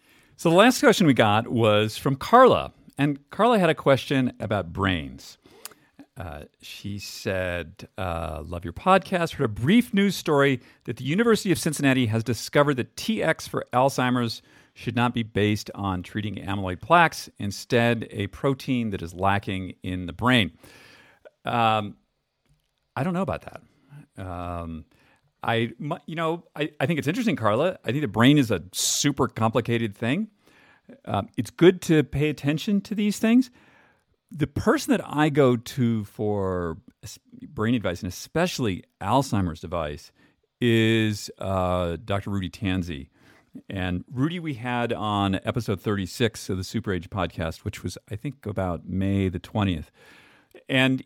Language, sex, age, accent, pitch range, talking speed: English, male, 50-69, American, 95-145 Hz, 155 wpm